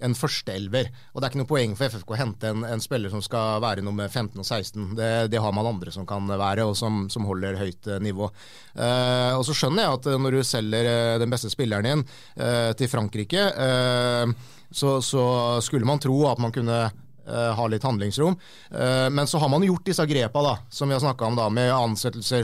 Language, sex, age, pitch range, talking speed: English, male, 30-49, 110-140 Hz, 210 wpm